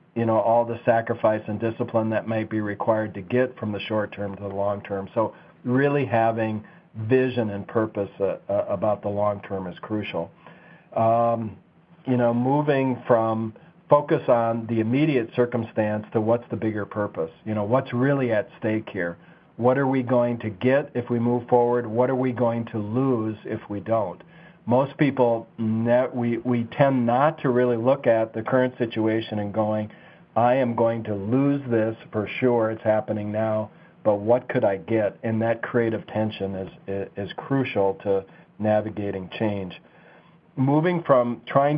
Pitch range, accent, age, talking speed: 105-125 Hz, American, 50-69, 170 wpm